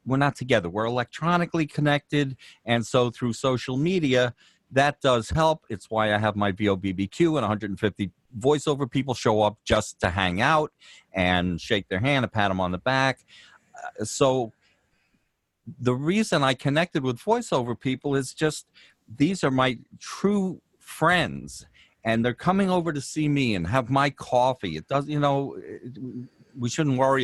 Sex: male